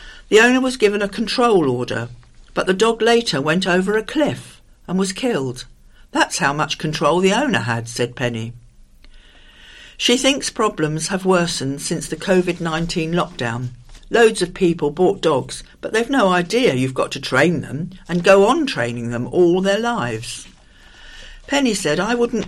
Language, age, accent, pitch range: English, 60-79, British, 135-210 Hz